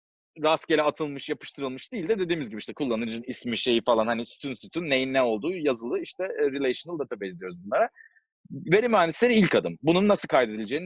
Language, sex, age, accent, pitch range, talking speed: Turkish, male, 40-59, native, 135-220 Hz, 170 wpm